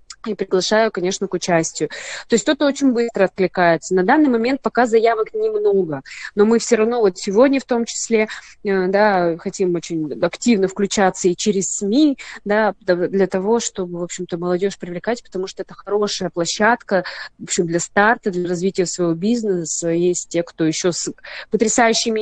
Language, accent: Russian, native